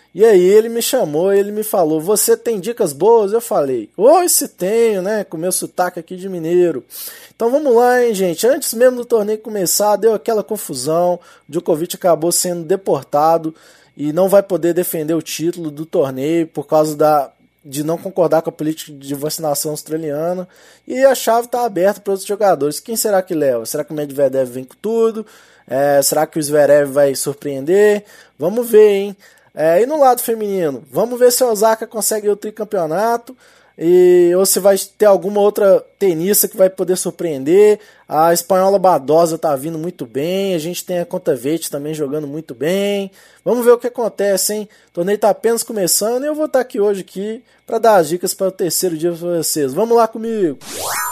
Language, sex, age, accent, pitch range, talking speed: Portuguese, male, 20-39, Brazilian, 165-225 Hz, 195 wpm